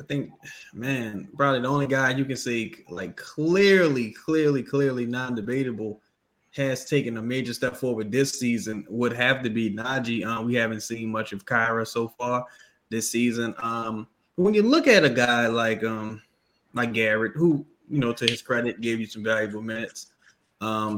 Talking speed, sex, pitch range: 175 wpm, male, 115-140 Hz